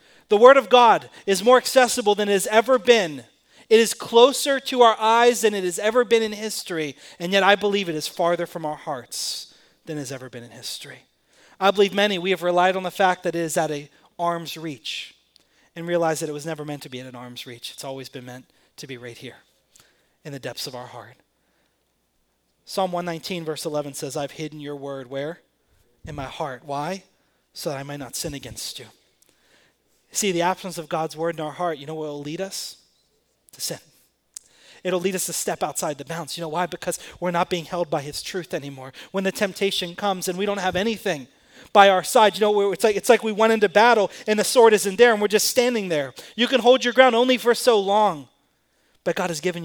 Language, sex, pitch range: English, male, 145-205 Hz